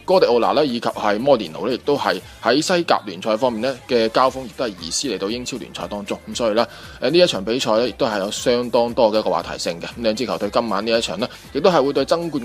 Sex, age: male, 20-39